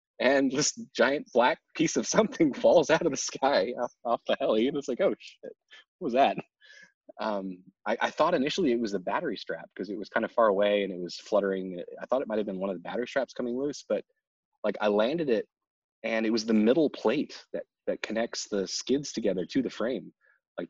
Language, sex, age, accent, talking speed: English, male, 20-39, American, 230 wpm